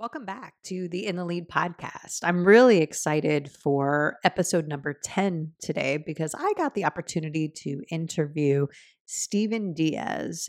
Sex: female